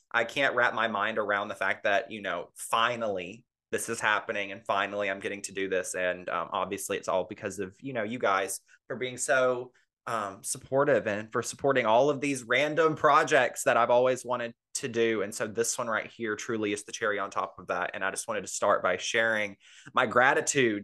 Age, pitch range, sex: 20-39, 105-135 Hz, male